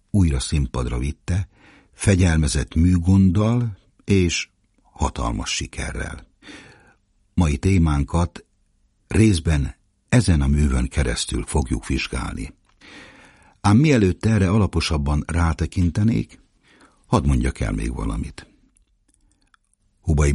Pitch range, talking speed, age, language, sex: 75-100 Hz, 85 wpm, 60-79, Hungarian, male